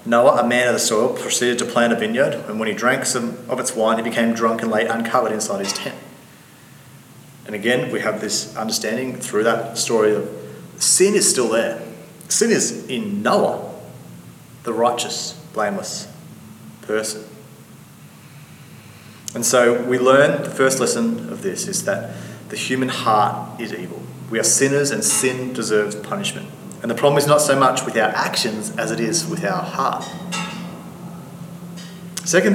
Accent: Australian